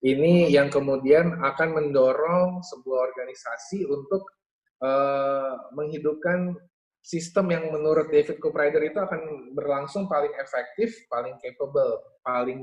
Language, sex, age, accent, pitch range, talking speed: Indonesian, male, 20-39, native, 130-160 Hz, 110 wpm